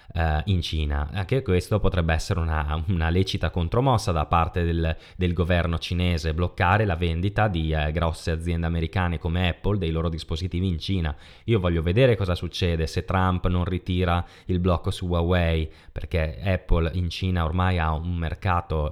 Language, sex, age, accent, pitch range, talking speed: Italian, male, 20-39, native, 80-95 Hz, 165 wpm